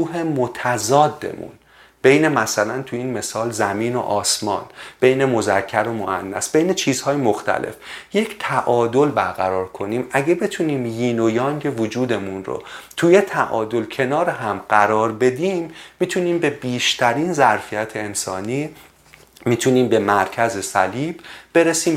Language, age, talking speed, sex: Persian, 30-49, 120 wpm, male